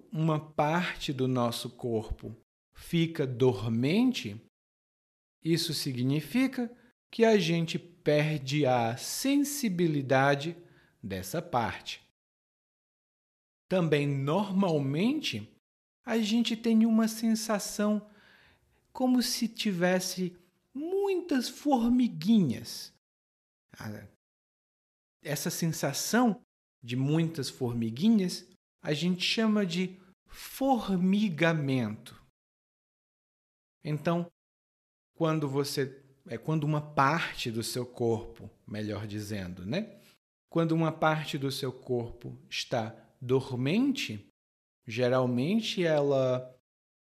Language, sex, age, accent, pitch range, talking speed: Portuguese, male, 50-69, Brazilian, 125-200 Hz, 80 wpm